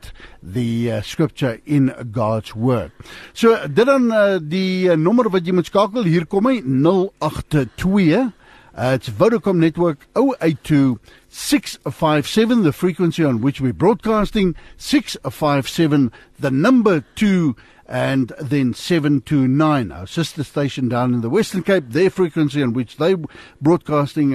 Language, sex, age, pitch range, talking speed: English, male, 60-79, 130-180 Hz, 120 wpm